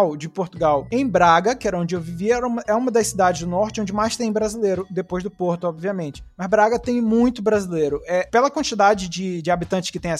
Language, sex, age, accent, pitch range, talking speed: Portuguese, male, 20-39, Brazilian, 180-240 Hz, 220 wpm